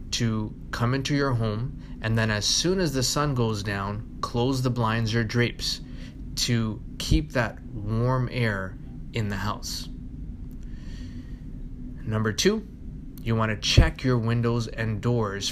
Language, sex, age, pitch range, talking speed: English, male, 20-39, 105-125 Hz, 145 wpm